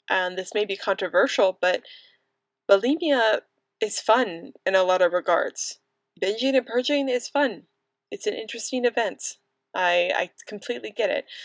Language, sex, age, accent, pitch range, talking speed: English, female, 20-39, American, 180-230 Hz, 145 wpm